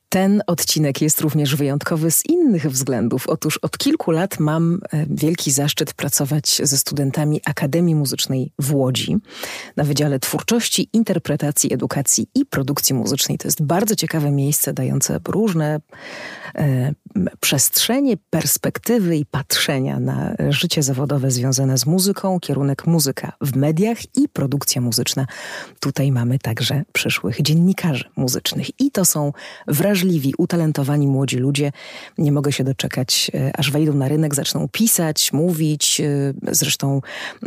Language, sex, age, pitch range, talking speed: Polish, female, 40-59, 140-170 Hz, 130 wpm